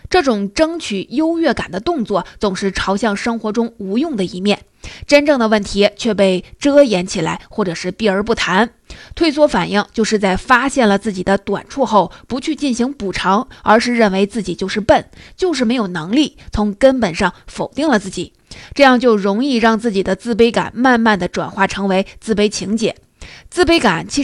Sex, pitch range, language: female, 195-245 Hz, Chinese